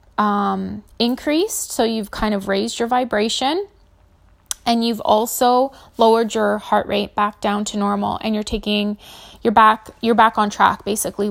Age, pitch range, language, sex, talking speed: 20-39, 205-235 Hz, English, female, 160 wpm